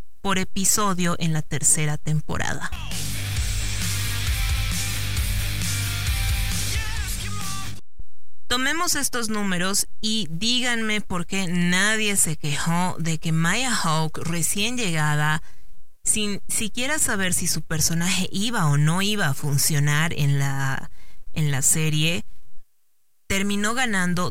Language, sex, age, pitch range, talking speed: Spanish, female, 30-49, 150-190 Hz, 100 wpm